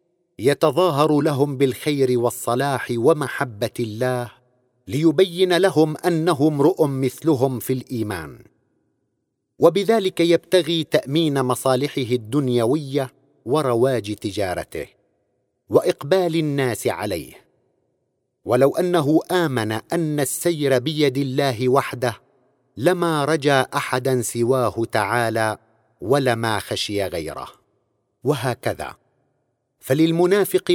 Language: Arabic